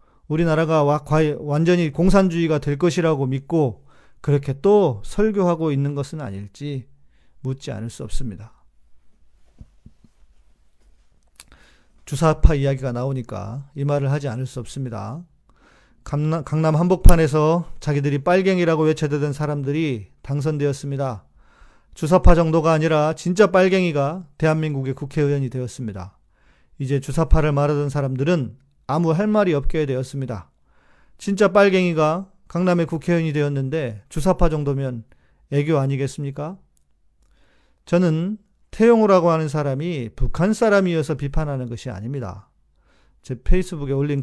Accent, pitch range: native, 125-165 Hz